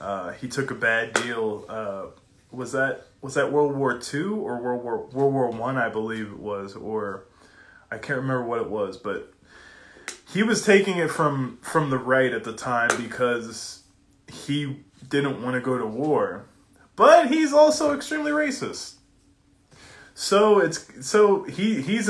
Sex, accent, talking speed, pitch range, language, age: male, American, 170 wpm, 115-145 Hz, English, 20-39